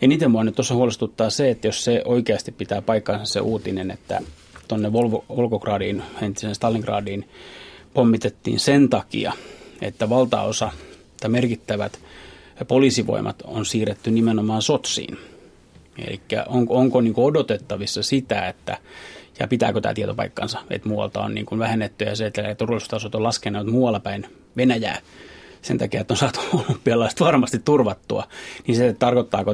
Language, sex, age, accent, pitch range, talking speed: Finnish, male, 30-49, native, 105-125 Hz, 135 wpm